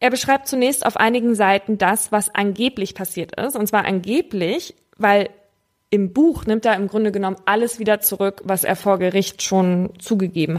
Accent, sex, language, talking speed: German, female, German, 175 wpm